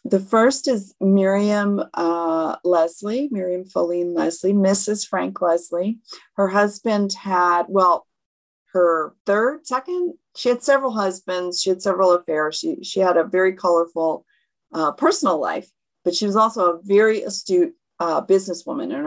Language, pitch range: English, 175-215 Hz